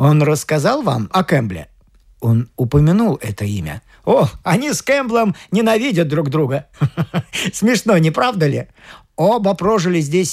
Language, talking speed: Russian, 135 wpm